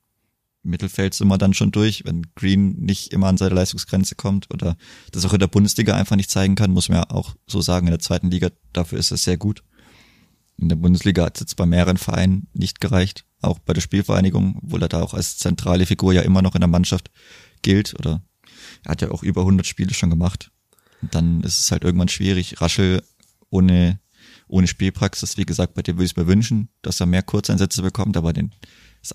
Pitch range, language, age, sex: 90-100 Hz, German, 20-39, male